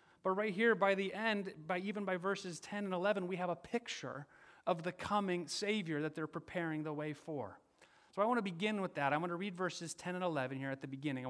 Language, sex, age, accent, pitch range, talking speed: English, male, 30-49, American, 125-180 Hz, 250 wpm